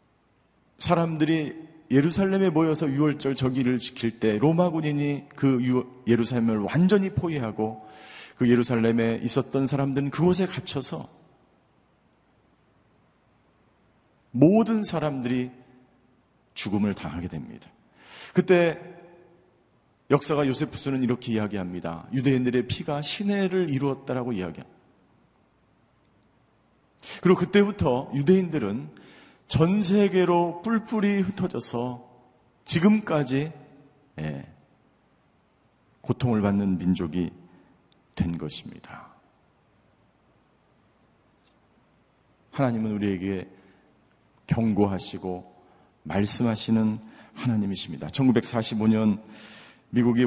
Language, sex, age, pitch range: Korean, male, 40-59, 110-160 Hz